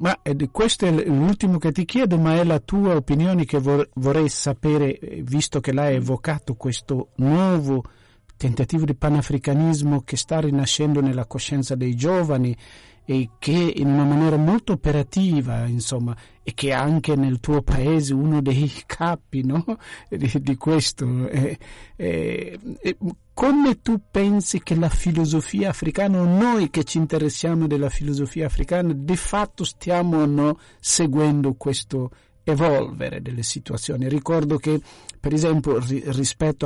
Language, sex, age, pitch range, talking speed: Italian, male, 50-69, 135-170 Hz, 135 wpm